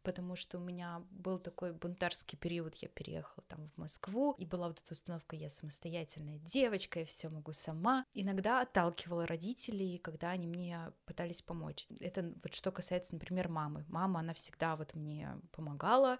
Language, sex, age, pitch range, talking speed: Russian, female, 20-39, 170-210 Hz, 165 wpm